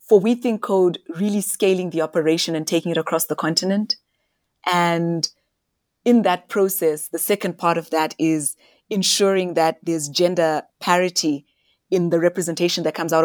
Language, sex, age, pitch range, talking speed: English, female, 30-49, 165-200 Hz, 160 wpm